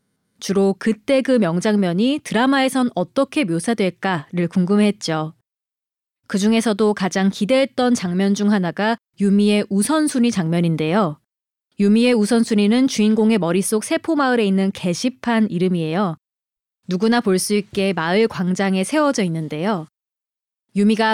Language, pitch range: Korean, 185-240 Hz